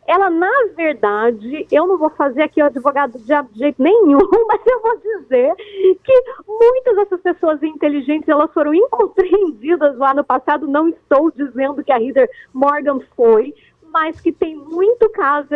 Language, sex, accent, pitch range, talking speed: Portuguese, female, Brazilian, 275-365 Hz, 155 wpm